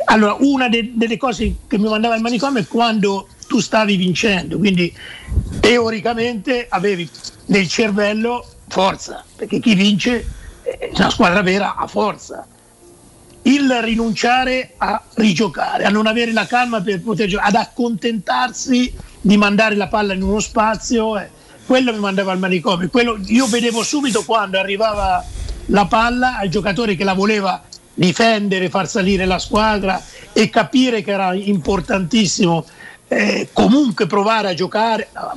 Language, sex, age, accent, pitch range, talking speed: Italian, male, 50-69, native, 195-230 Hz, 145 wpm